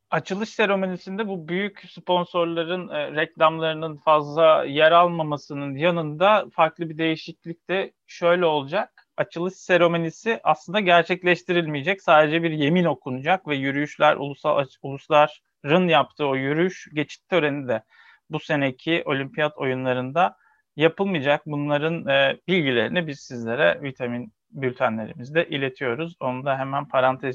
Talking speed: 110 wpm